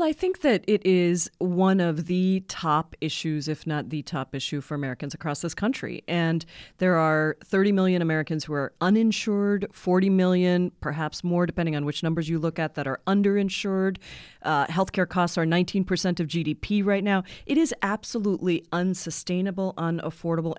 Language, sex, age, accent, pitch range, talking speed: English, female, 30-49, American, 160-205 Hz, 170 wpm